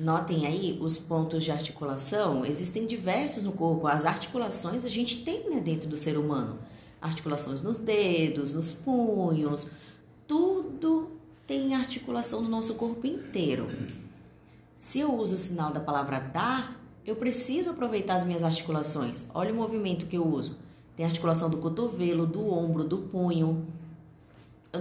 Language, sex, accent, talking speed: Portuguese, female, Brazilian, 150 wpm